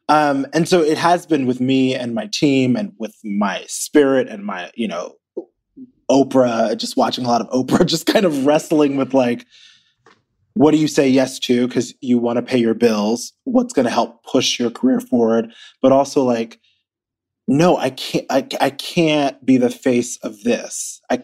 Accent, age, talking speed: American, 20-39, 190 wpm